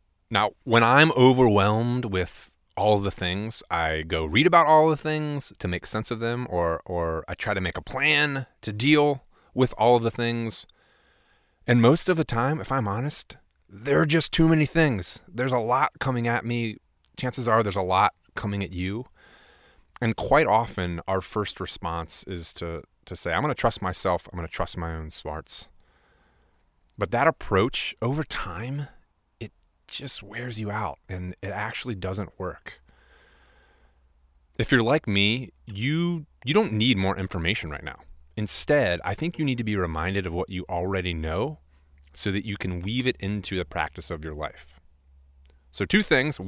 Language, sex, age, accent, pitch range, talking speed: English, male, 30-49, American, 85-125 Hz, 180 wpm